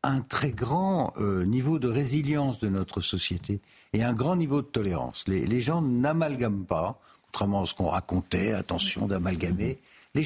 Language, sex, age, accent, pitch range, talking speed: French, male, 60-79, French, 95-150 Hz, 160 wpm